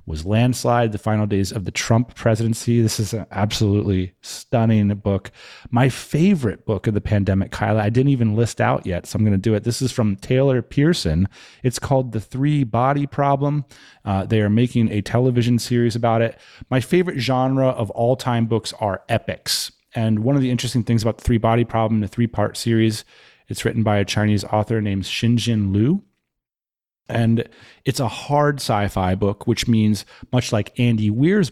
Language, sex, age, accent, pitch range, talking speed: English, male, 30-49, American, 105-130 Hz, 185 wpm